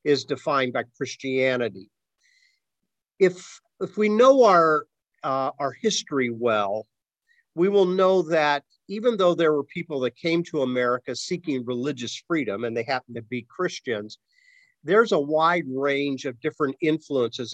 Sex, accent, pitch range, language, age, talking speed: male, American, 130-175 Hz, English, 50-69, 145 wpm